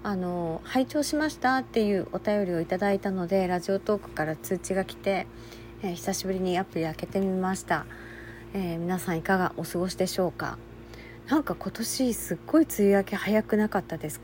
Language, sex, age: Japanese, female, 40-59